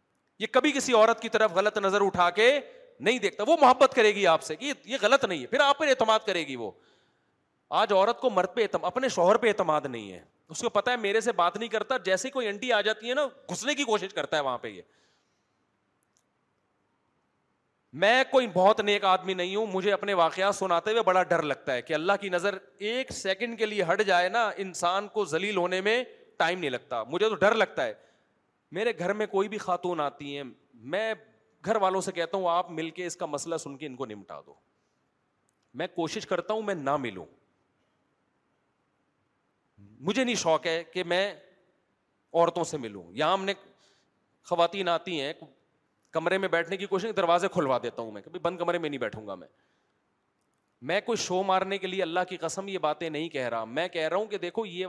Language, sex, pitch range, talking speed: Urdu, male, 170-220 Hz, 210 wpm